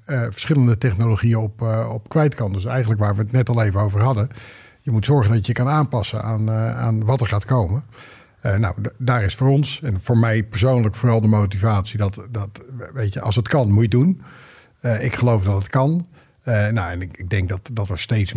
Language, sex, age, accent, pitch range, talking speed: Dutch, male, 50-69, Dutch, 105-125 Hz, 235 wpm